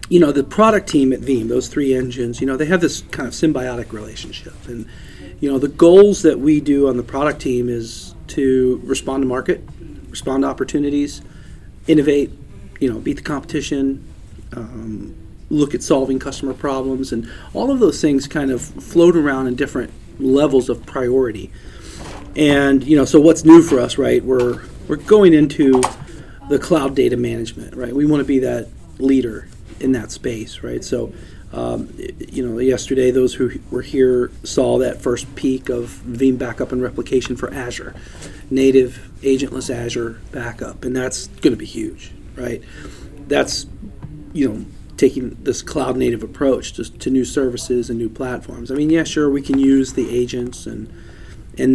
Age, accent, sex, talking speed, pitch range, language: 40-59, American, male, 175 wpm, 120-140 Hz, English